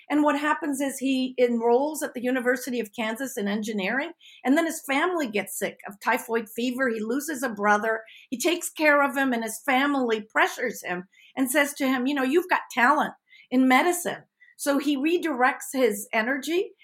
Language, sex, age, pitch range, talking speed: English, female, 50-69, 235-310 Hz, 185 wpm